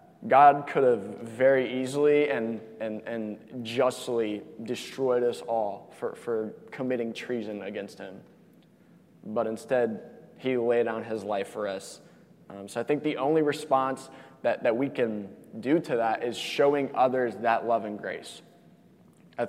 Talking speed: 150 wpm